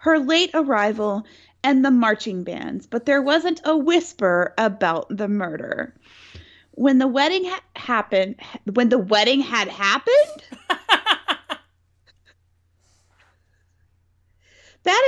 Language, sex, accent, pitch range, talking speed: English, female, American, 195-280 Hz, 100 wpm